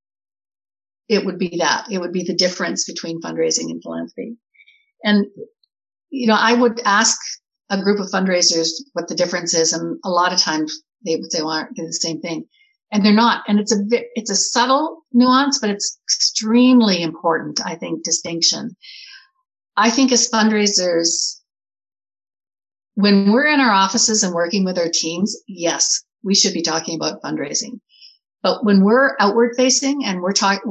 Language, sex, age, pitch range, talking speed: English, female, 60-79, 165-235 Hz, 170 wpm